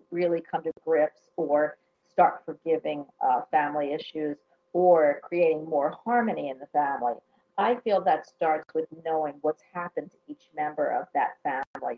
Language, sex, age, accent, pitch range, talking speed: English, female, 50-69, American, 160-195 Hz, 155 wpm